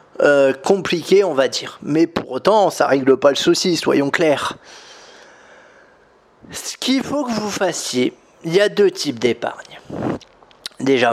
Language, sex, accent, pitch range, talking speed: French, male, French, 150-240 Hz, 150 wpm